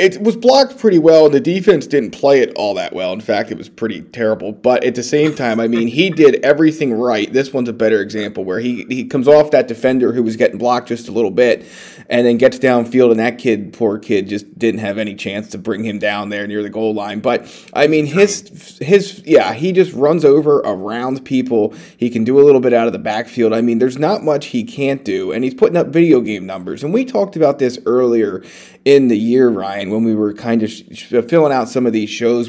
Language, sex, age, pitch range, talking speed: English, male, 30-49, 110-150 Hz, 245 wpm